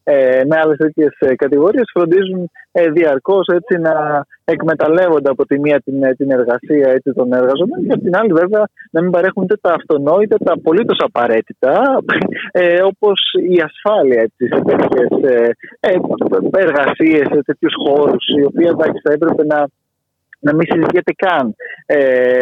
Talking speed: 155 wpm